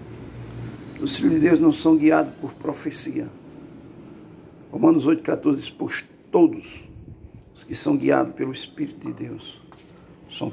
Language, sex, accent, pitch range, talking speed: Portuguese, male, Brazilian, 135-165 Hz, 125 wpm